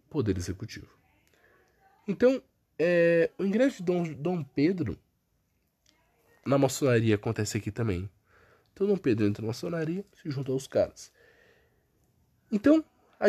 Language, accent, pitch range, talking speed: Portuguese, Brazilian, 100-155 Hz, 120 wpm